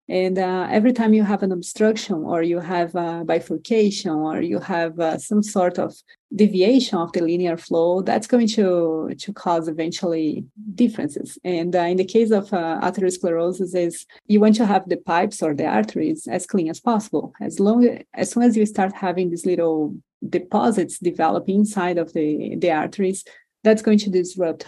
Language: English